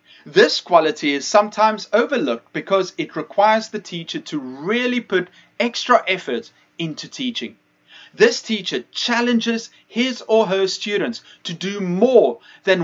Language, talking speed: English, 130 wpm